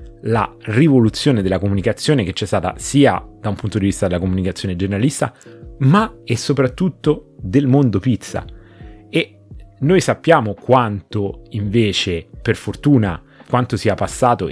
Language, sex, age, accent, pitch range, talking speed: Italian, male, 30-49, native, 95-120 Hz, 130 wpm